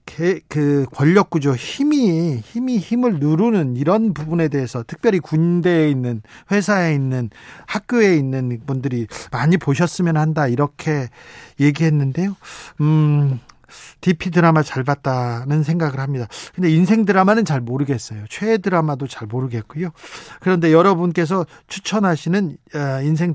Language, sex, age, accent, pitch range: Korean, male, 40-59, native, 145-185 Hz